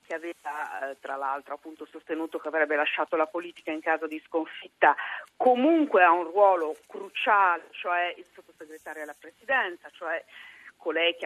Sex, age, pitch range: female, 40-59, 175-270 Hz